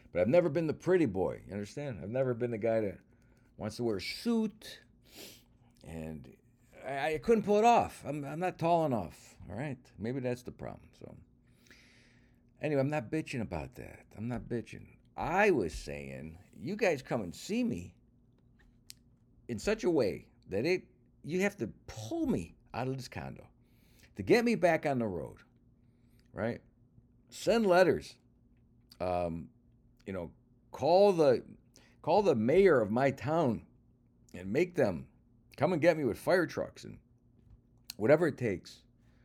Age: 50-69